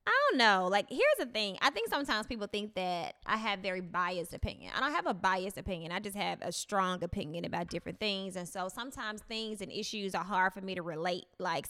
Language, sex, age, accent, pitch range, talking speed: English, female, 20-39, American, 185-220 Hz, 235 wpm